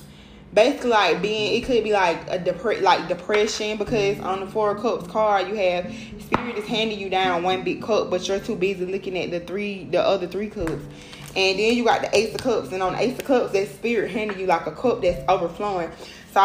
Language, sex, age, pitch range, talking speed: English, female, 20-39, 185-220 Hz, 235 wpm